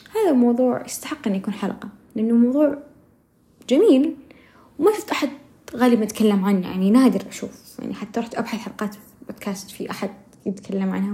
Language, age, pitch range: Arabic, 10-29, 200-275 Hz